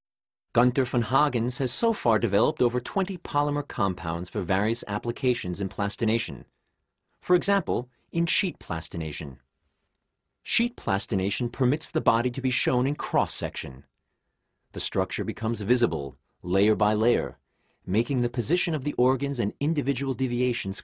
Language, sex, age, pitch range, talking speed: English, male, 40-59, 95-140 Hz, 135 wpm